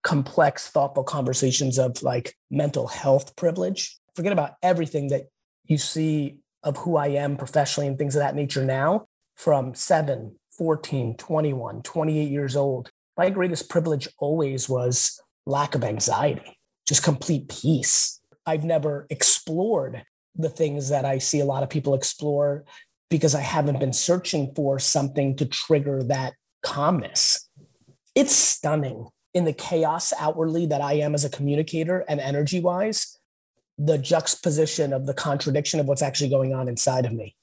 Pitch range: 140-160 Hz